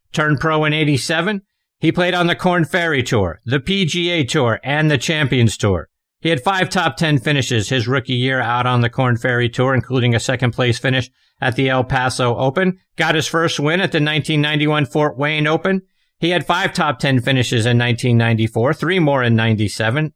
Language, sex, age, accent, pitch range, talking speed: English, male, 50-69, American, 125-155 Hz, 195 wpm